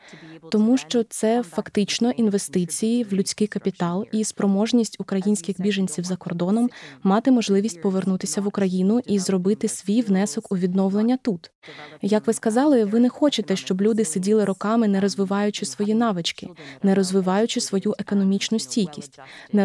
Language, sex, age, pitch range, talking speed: Ukrainian, female, 20-39, 195-225 Hz, 140 wpm